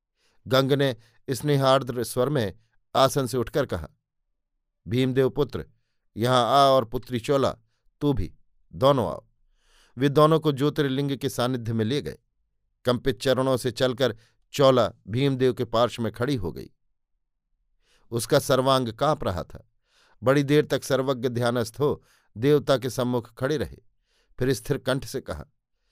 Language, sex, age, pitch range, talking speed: Hindi, male, 50-69, 115-140 Hz, 145 wpm